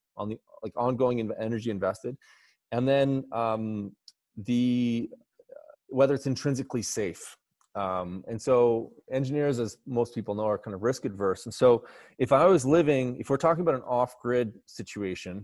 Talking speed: 155 wpm